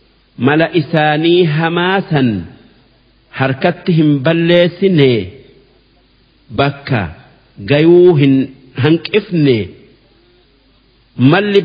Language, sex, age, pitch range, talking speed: Arabic, male, 50-69, 135-175 Hz, 50 wpm